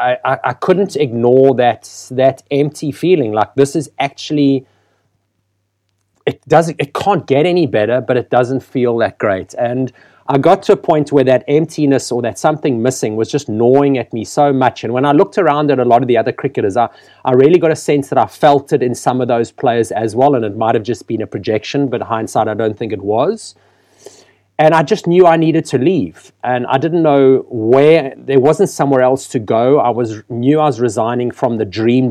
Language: English